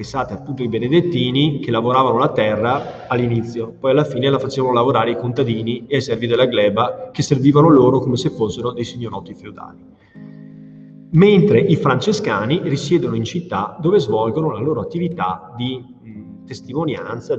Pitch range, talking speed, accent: 120-160 Hz, 150 wpm, native